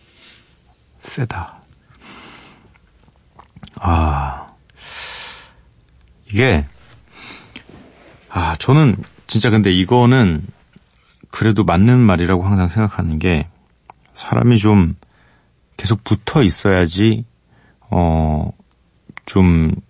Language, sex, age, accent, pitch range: Korean, male, 40-59, native, 90-125 Hz